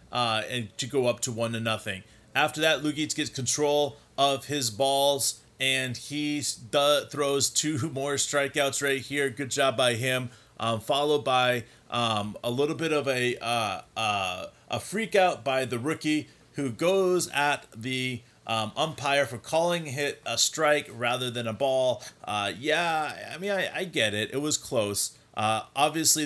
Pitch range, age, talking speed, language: 120-145 Hz, 30-49, 170 wpm, English